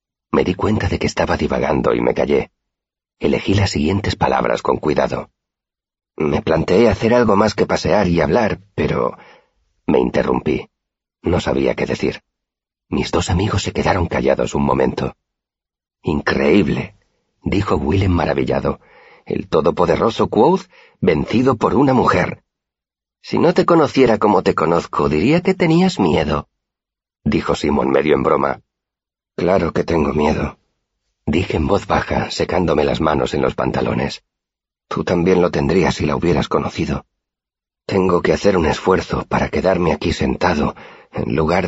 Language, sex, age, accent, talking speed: Spanish, male, 50-69, Spanish, 145 wpm